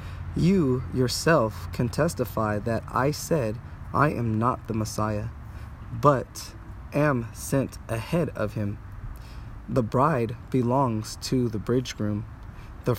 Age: 20-39